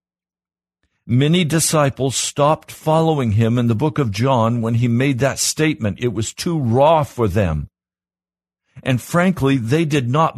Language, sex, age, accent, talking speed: English, male, 60-79, American, 150 wpm